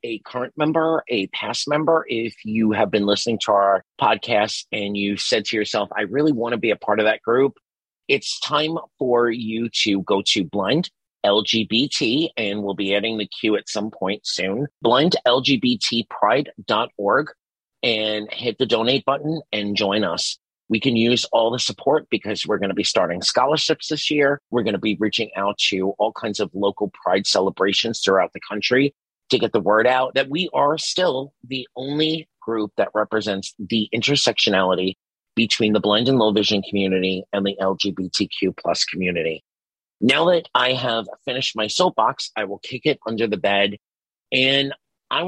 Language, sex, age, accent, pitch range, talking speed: English, male, 30-49, American, 100-130 Hz, 175 wpm